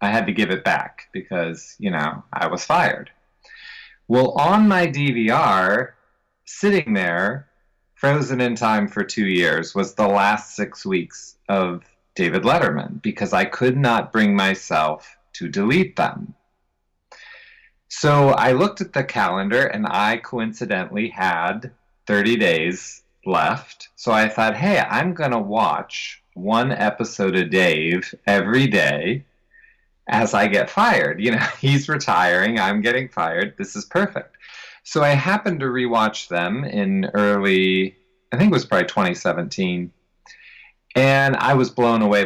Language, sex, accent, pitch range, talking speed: English, male, American, 100-145 Hz, 140 wpm